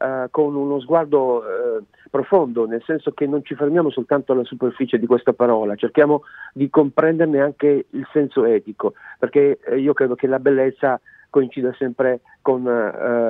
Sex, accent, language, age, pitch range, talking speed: male, native, Italian, 50-69, 125-150 Hz, 155 wpm